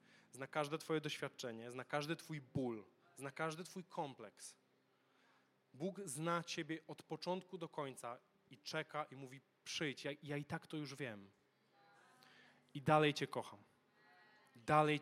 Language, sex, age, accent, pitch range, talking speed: Polish, male, 20-39, native, 130-160 Hz, 145 wpm